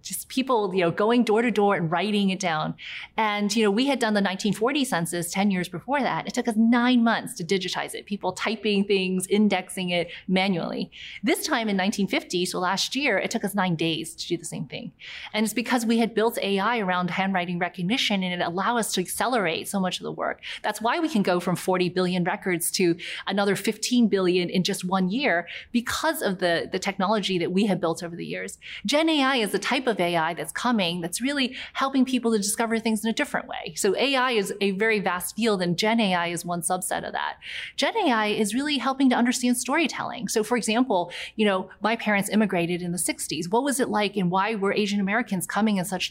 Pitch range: 185-235 Hz